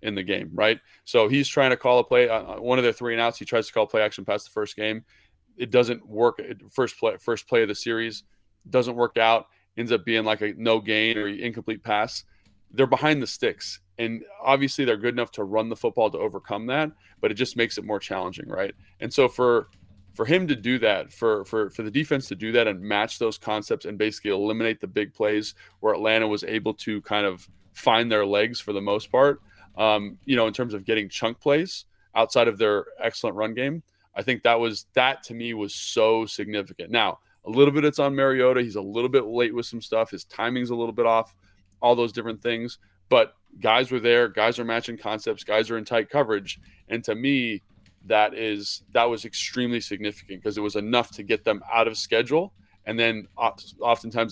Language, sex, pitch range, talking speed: English, male, 105-120 Hz, 220 wpm